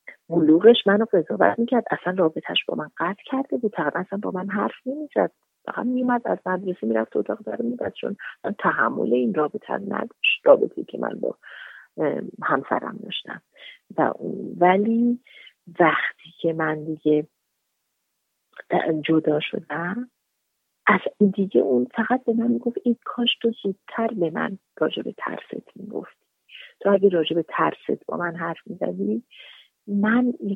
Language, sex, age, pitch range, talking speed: Persian, female, 40-59, 170-235 Hz, 135 wpm